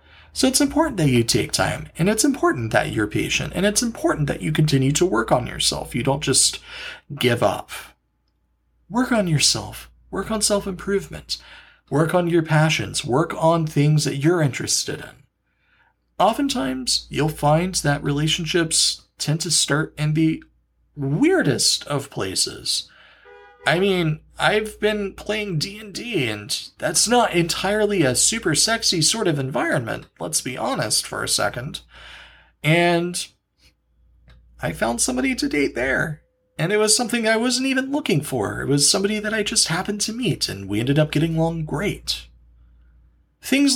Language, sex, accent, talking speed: English, male, American, 155 wpm